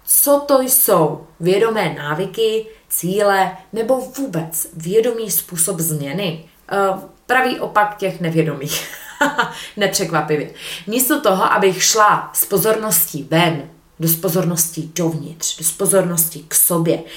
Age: 20-39